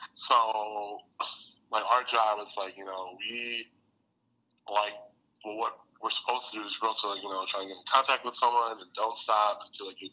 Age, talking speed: 20-39, 200 wpm